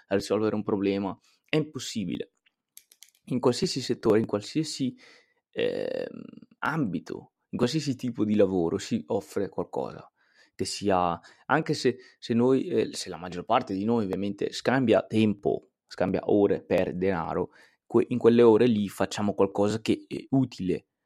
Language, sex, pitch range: Italian, male, 95-120 Hz